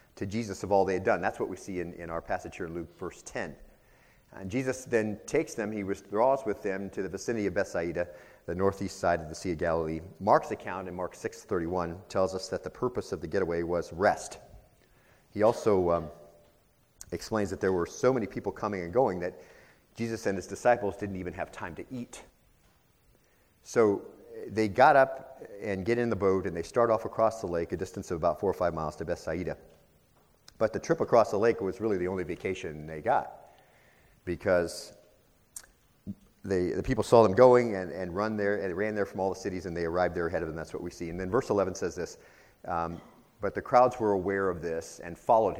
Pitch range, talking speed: 85-110 Hz, 220 wpm